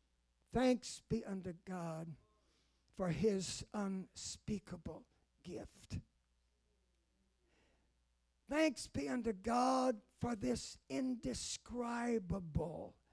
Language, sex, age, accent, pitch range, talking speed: English, male, 50-69, American, 210-310 Hz, 70 wpm